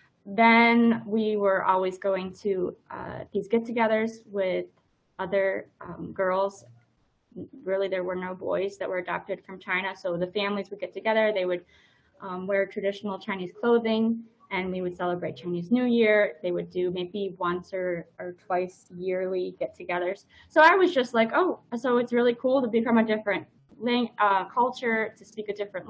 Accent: American